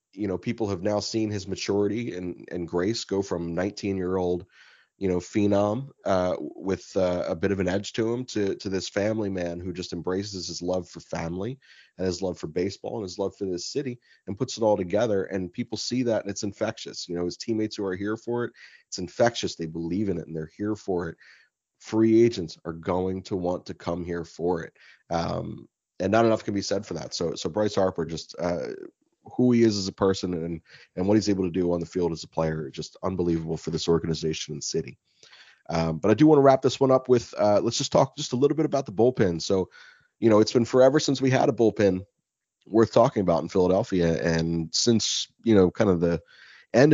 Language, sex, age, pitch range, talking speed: English, male, 30-49, 90-115 Hz, 235 wpm